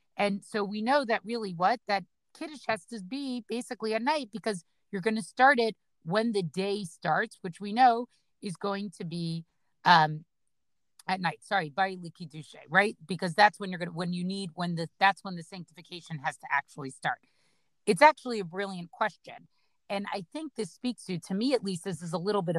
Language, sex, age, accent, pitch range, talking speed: English, female, 40-59, American, 175-225 Hz, 205 wpm